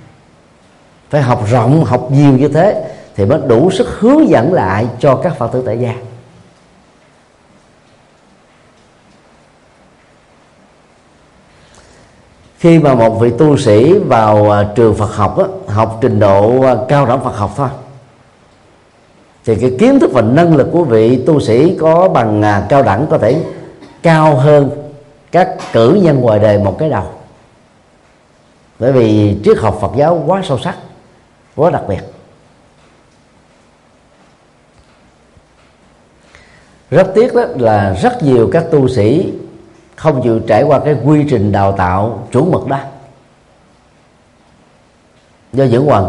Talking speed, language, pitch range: 130 wpm, Vietnamese, 110-145 Hz